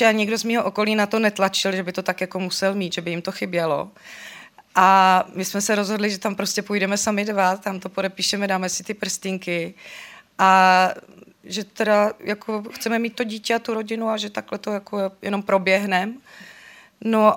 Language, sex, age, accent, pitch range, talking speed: Czech, female, 30-49, native, 185-220 Hz, 195 wpm